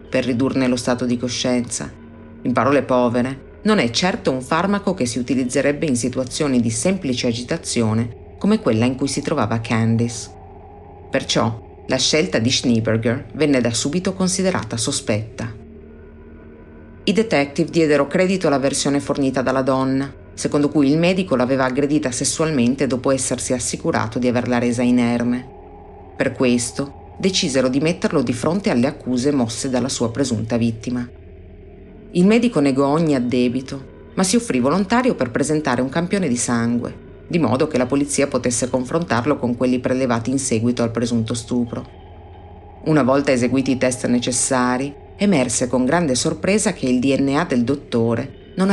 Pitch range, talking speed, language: 120-145 Hz, 150 wpm, Italian